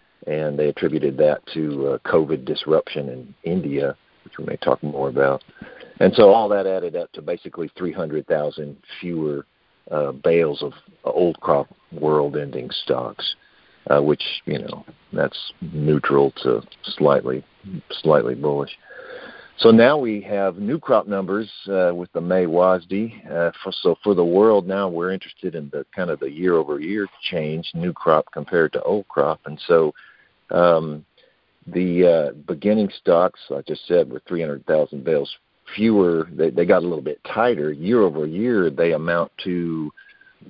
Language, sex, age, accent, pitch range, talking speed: English, male, 50-69, American, 75-100 Hz, 160 wpm